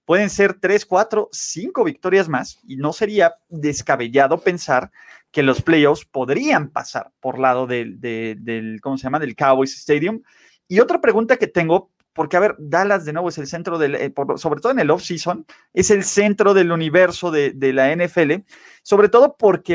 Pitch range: 140-180 Hz